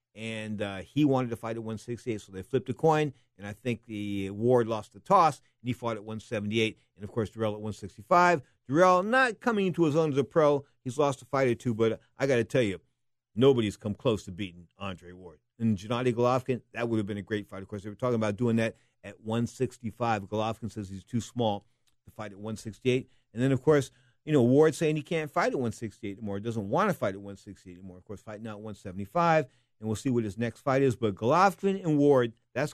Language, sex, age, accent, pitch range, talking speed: English, male, 50-69, American, 105-145 Hz, 235 wpm